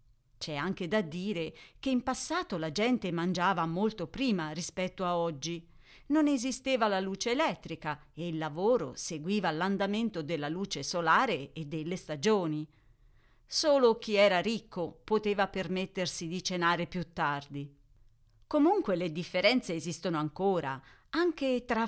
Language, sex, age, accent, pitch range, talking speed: Italian, female, 40-59, native, 160-215 Hz, 130 wpm